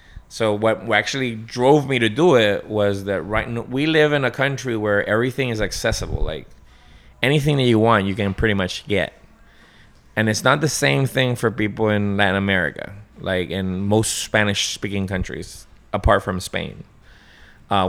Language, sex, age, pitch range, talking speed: English, male, 20-39, 95-120 Hz, 170 wpm